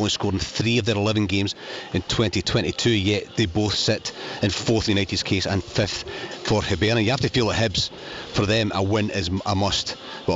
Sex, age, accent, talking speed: male, 30-49, British, 215 wpm